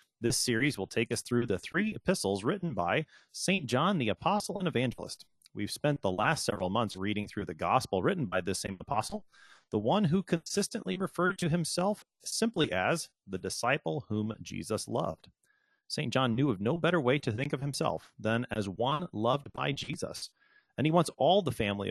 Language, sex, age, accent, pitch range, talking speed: English, male, 30-49, American, 105-160 Hz, 190 wpm